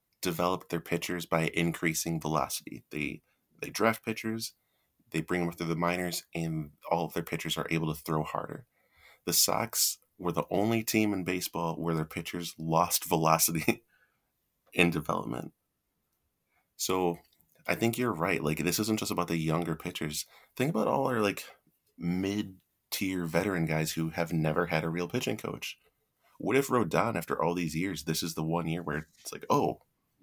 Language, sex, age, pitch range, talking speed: English, male, 30-49, 80-95 Hz, 170 wpm